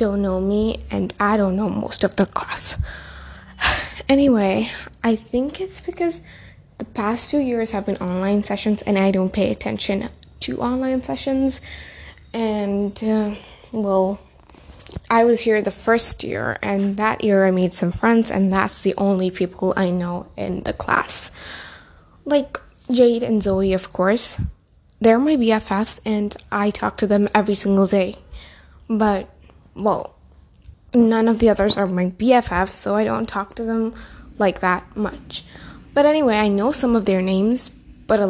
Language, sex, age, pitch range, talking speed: English, female, 10-29, 195-230 Hz, 160 wpm